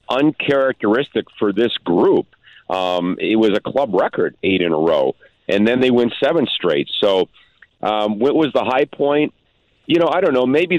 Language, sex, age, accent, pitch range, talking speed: English, male, 50-69, American, 100-120 Hz, 185 wpm